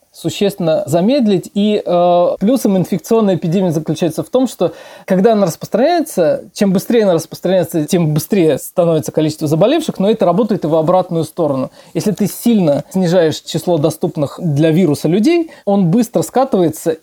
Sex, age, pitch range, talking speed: male, 20-39, 155-195 Hz, 150 wpm